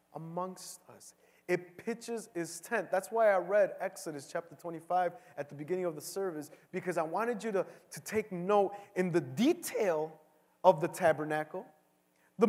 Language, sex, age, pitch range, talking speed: English, male, 30-49, 150-225 Hz, 165 wpm